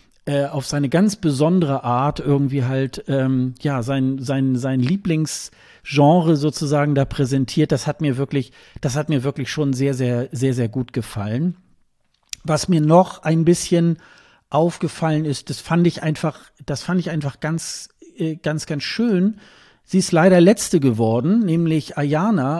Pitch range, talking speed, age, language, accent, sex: 135-160 Hz, 155 wpm, 50-69, German, German, male